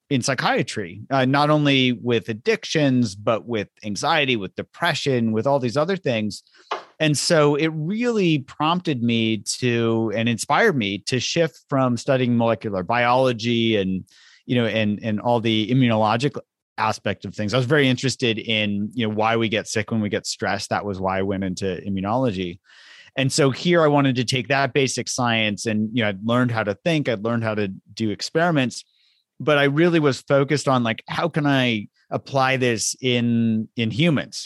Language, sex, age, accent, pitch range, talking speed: English, male, 30-49, American, 110-135 Hz, 185 wpm